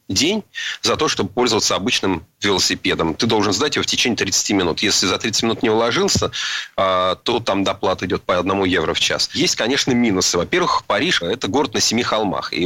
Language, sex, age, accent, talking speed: Russian, male, 30-49, native, 195 wpm